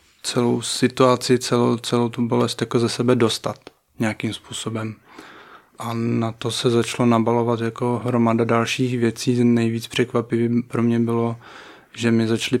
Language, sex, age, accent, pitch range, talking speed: Czech, male, 20-39, native, 115-125 Hz, 145 wpm